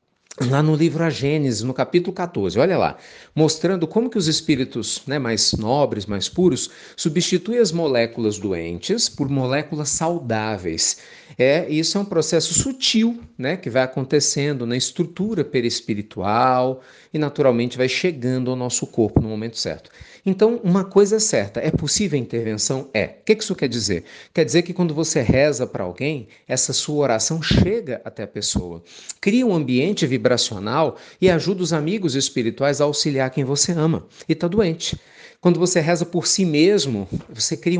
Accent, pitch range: Brazilian, 125-175 Hz